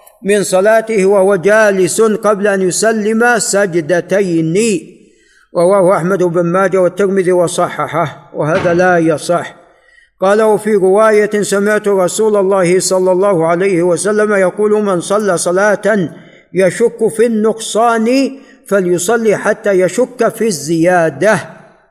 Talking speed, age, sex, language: 105 wpm, 60-79, male, Arabic